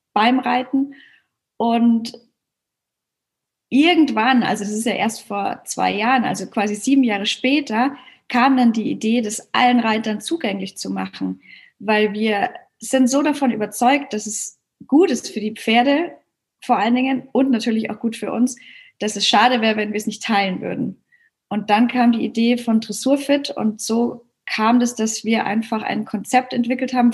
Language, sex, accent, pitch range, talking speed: German, female, German, 220-260 Hz, 170 wpm